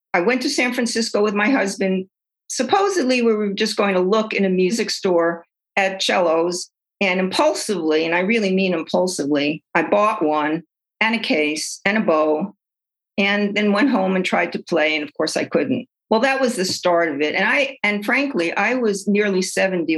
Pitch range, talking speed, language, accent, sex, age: 170-230 Hz, 190 wpm, English, American, female, 50-69